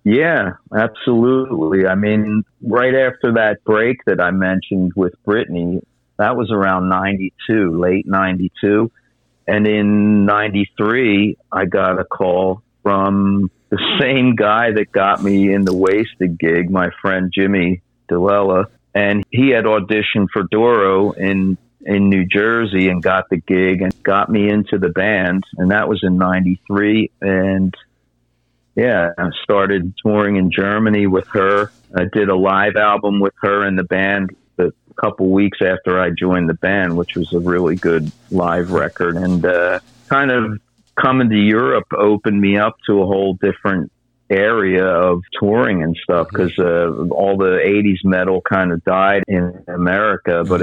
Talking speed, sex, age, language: 155 wpm, male, 50-69, English